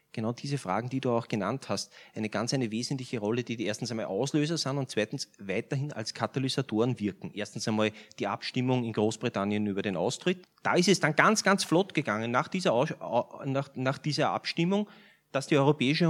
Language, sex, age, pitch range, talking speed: German, male, 30-49, 110-150 Hz, 195 wpm